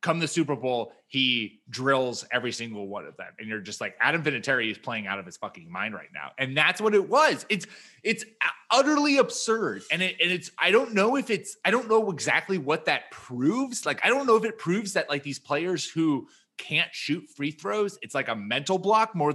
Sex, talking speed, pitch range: male, 225 wpm, 135-215 Hz